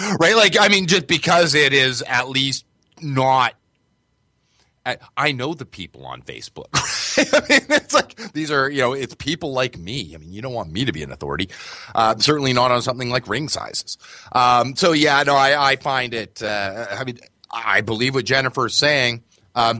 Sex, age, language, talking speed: male, 30-49, English, 195 wpm